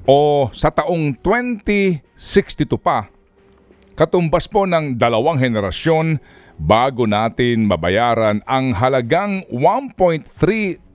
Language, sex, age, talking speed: Filipino, male, 40-59, 90 wpm